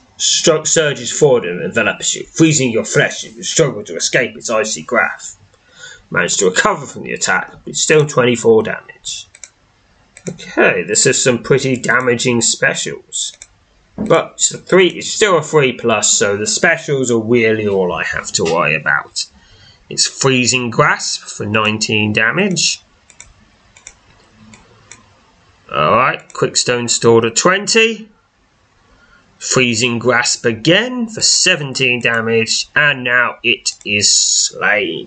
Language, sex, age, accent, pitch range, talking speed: English, male, 20-39, British, 110-150 Hz, 120 wpm